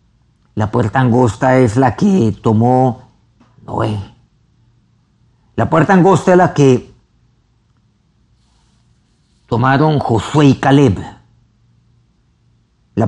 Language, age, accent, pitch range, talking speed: Spanish, 50-69, Mexican, 105-130 Hz, 85 wpm